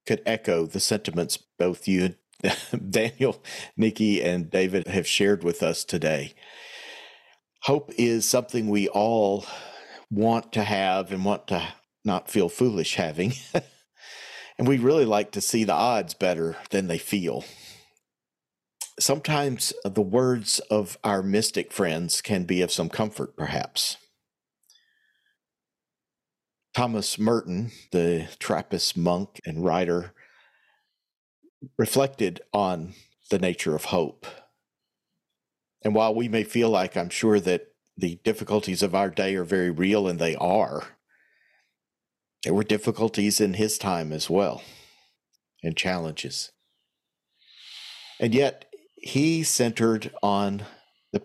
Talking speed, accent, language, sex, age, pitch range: 125 wpm, American, English, male, 50-69, 90-120 Hz